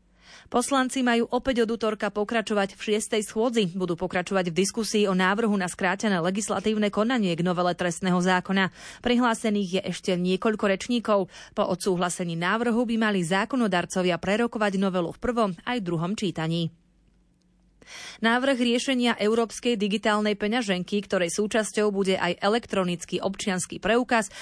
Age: 30-49